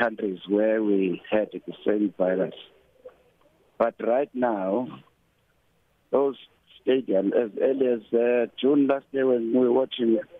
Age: 60-79